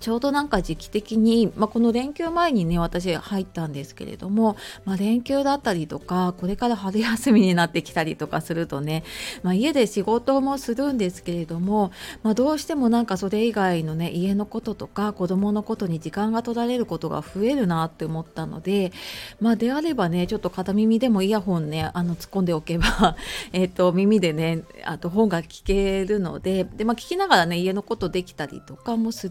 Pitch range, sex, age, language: 165-225 Hz, female, 30-49, Japanese